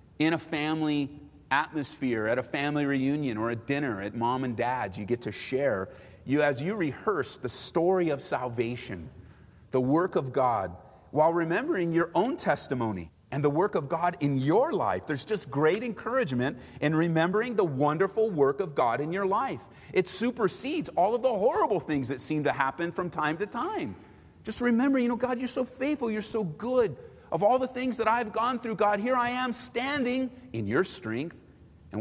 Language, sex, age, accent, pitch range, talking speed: English, male, 30-49, American, 115-170 Hz, 190 wpm